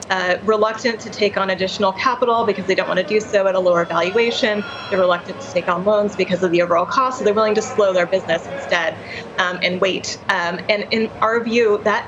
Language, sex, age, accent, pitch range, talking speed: English, female, 30-49, American, 185-215 Hz, 230 wpm